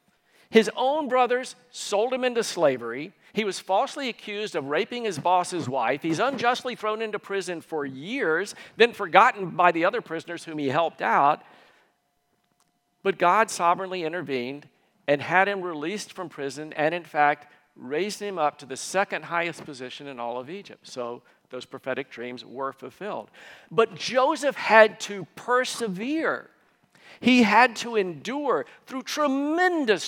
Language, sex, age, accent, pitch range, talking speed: English, male, 50-69, American, 150-230 Hz, 150 wpm